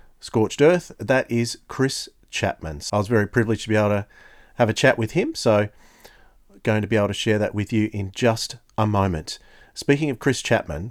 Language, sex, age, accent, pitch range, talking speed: English, male, 40-59, Australian, 105-120 Hz, 205 wpm